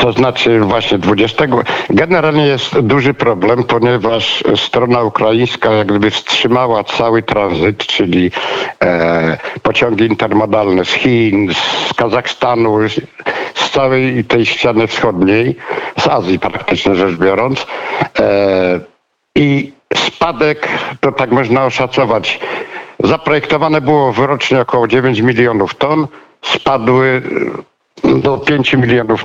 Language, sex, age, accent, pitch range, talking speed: Polish, male, 60-79, native, 110-135 Hz, 105 wpm